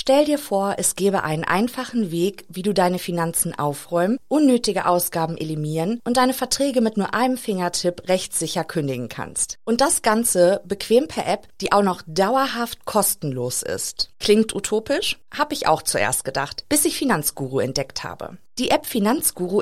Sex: female